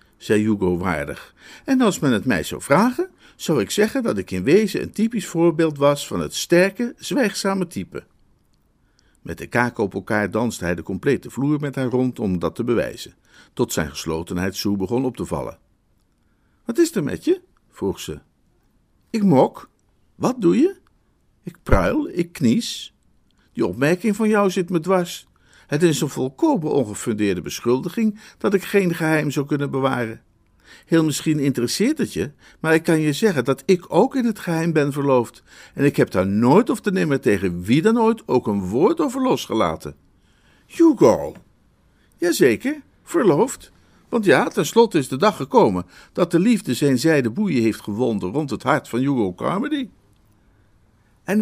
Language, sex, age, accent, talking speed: Dutch, male, 50-69, Dutch, 170 wpm